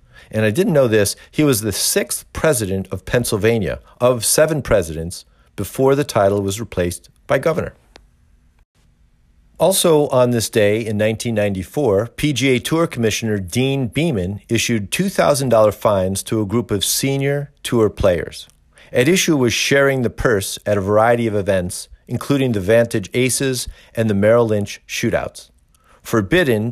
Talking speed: 145 wpm